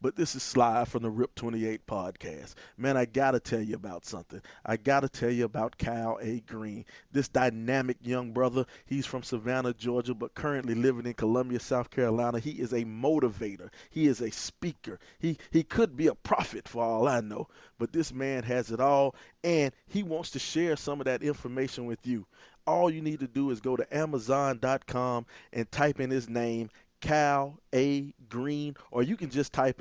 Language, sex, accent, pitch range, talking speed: English, male, American, 120-145 Hz, 195 wpm